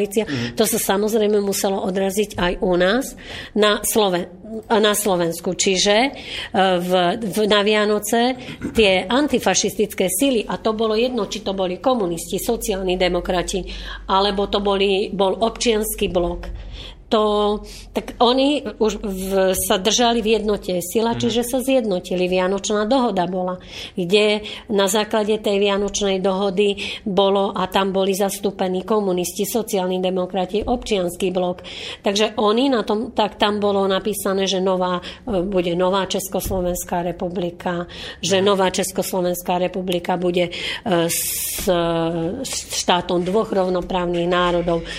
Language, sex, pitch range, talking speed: Slovak, female, 185-215 Hz, 120 wpm